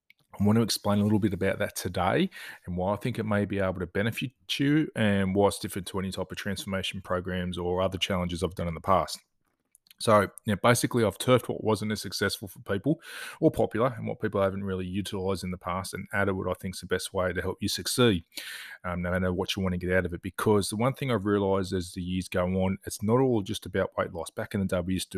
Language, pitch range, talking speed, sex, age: English, 95-105 Hz, 260 wpm, male, 20-39